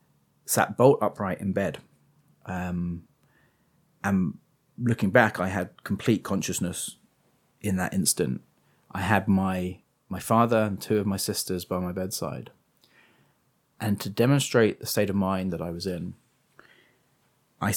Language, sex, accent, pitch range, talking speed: English, male, British, 95-110 Hz, 140 wpm